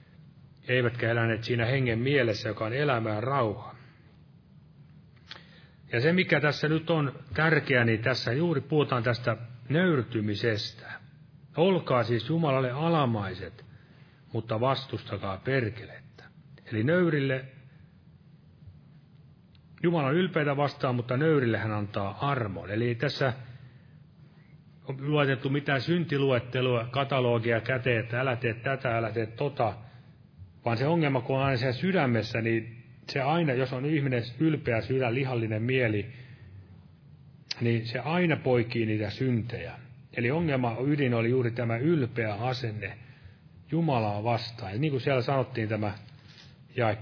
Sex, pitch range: male, 115-145 Hz